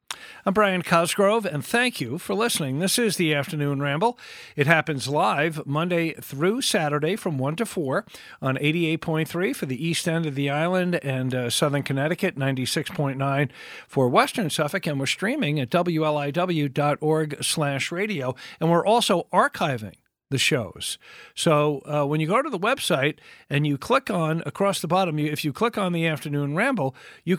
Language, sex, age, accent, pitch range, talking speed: English, male, 50-69, American, 140-180 Hz, 165 wpm